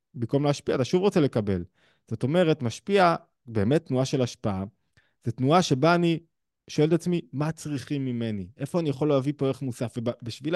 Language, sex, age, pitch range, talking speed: Hebrew, male, 20-39, 125-175 Hz, 175 wpm